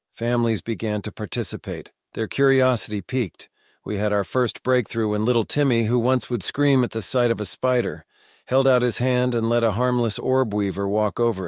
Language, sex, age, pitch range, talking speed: English, male, 50-69, 110-125 Hz, 195 wpm